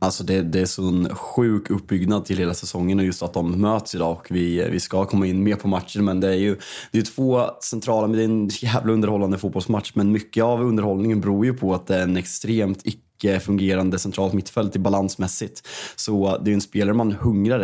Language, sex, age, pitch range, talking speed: Swedish, male, 20-39, 95-110 Hz, 220 wpm